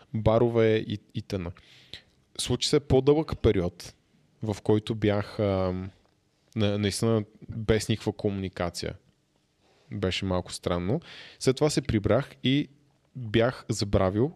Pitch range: 105-130 Hz